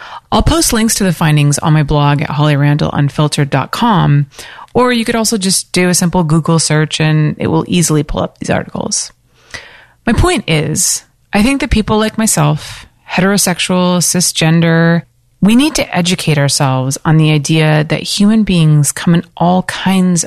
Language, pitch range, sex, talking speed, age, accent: English, 155-215 Hz, female, 165 wpm, 30-49, American